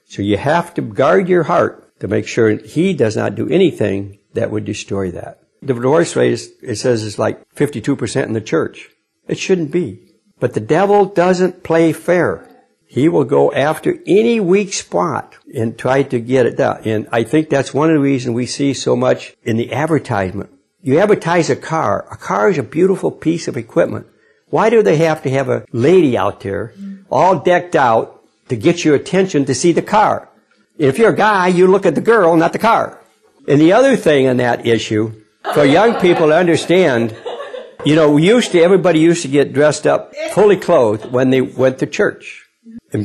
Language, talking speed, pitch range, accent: English, 200 wpm, 130-185 Hz, American